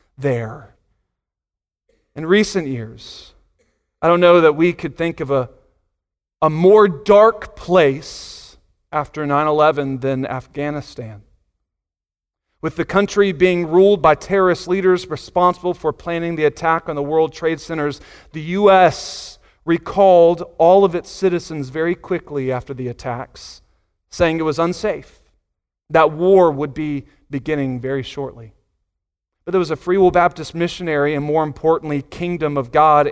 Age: 40-59